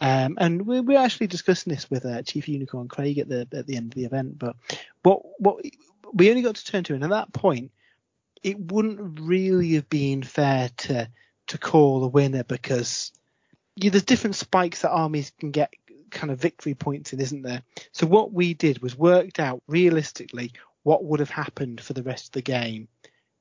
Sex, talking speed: male, 205 wpm